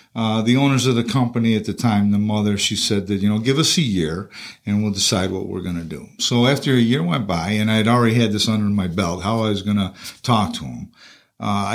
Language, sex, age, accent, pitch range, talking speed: English, male, 50-69, American, 105-140 Hz, 260 wpm